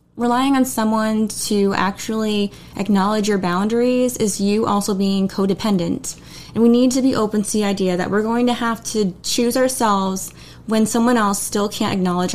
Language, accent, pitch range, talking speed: English, American, 195-240 Hz, 175 wpm